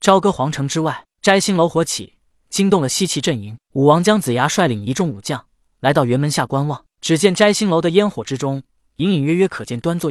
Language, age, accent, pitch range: Chinese, 20-39, native, 135-195 Hz